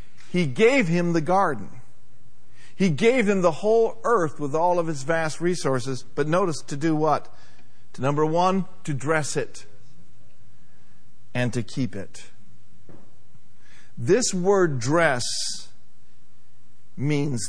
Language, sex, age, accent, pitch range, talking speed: English, male, 50-69, American, 115-160 Hz, 125 wpm